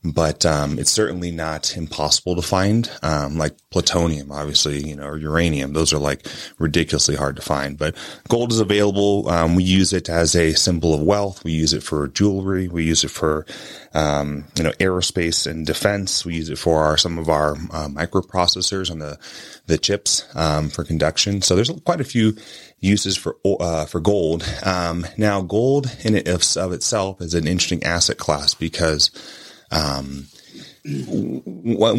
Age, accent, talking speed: 30-49, American, 175 wpm